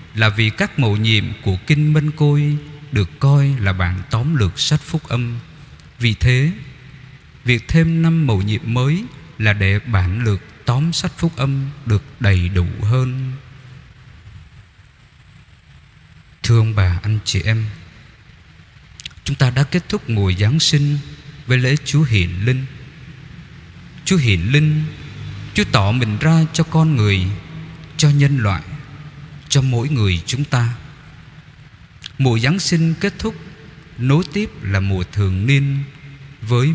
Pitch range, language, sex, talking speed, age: 105-150 Hz, Vietnamese, male, 140 wpm, 20-39